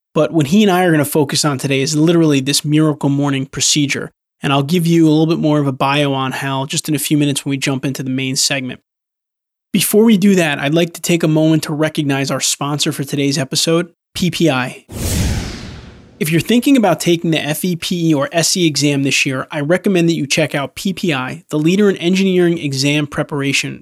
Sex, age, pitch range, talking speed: male, 20-39, 140-165 Hz, 215 wpm